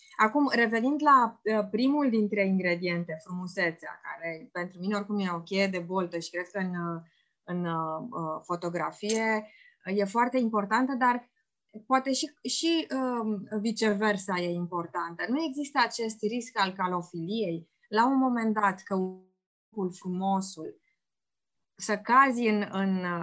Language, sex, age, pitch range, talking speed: Romanian, female, 20-39, 190-265 Hz, 130 wpm